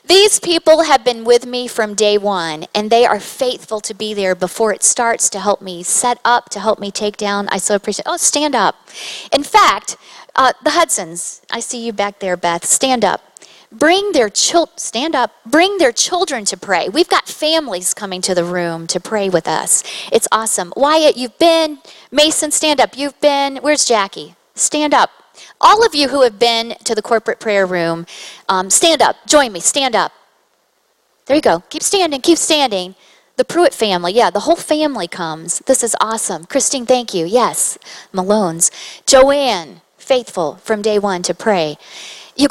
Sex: female